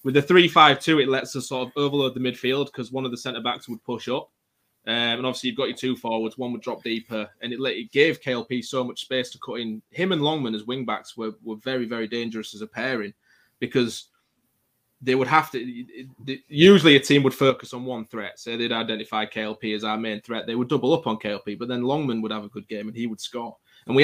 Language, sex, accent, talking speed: English, male, British, 245 wpm